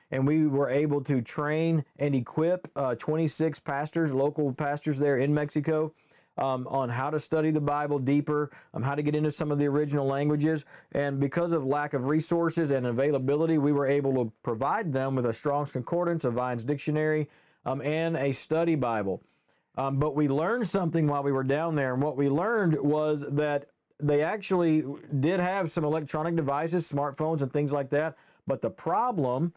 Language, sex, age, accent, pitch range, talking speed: English, male, 40-59, American, 135-160 Hz, 185 wpm